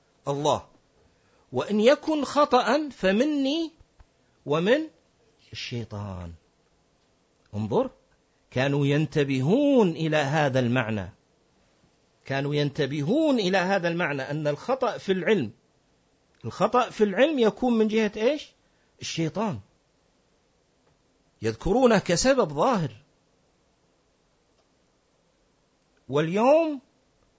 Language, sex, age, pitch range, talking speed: Arabic, male, 50-69, 140-225 Hz, 75 wpm